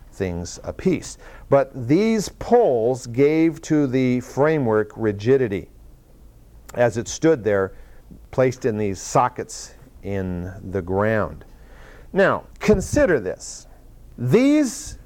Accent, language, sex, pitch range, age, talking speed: American, English, male, 115-165 Hz, 50-69, 100 wpm